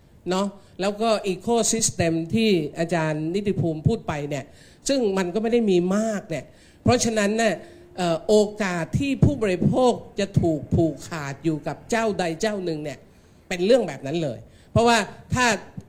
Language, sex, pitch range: Thai, male, 170-215 Hz